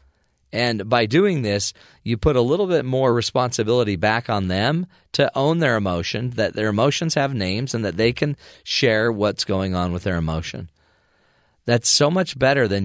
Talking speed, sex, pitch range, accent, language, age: 180 wpm, male, 90-120 Hz, American, English, 40-59